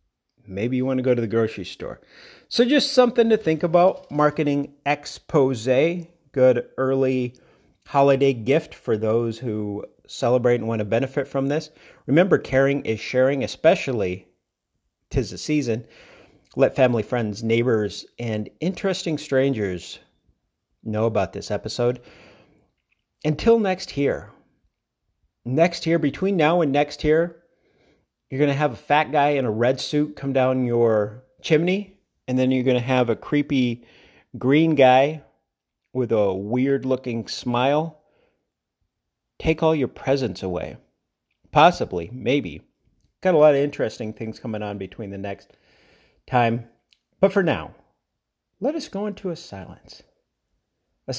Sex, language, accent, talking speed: male, English, American, 140 wpm